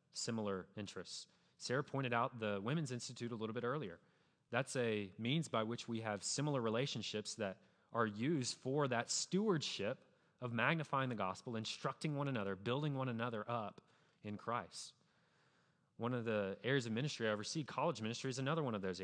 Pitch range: 115-145 Hz